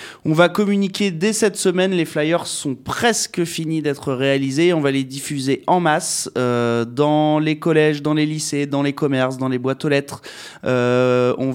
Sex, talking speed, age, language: male, 185 wpm, 20-39, French